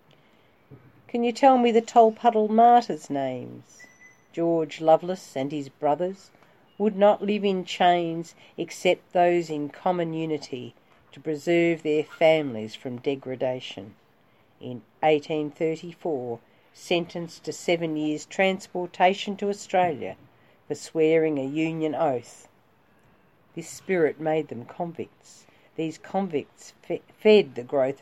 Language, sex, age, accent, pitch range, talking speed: English, female, 50-69, Australian, 135-185 Hz, 115 wpm